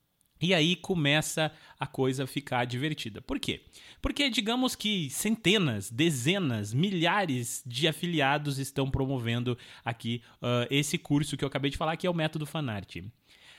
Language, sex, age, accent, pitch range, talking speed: Portuguese, male, 20-39, Brazilian, 135-195 Hz, 145 wpm